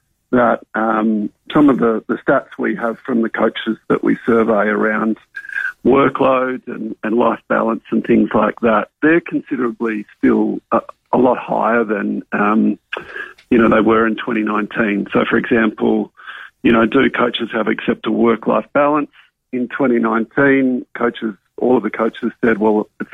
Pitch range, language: 110-125 Hz, English